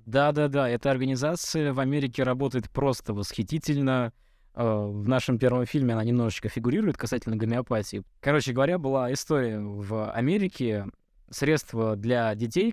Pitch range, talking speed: 115-145 Hz, 125 wpm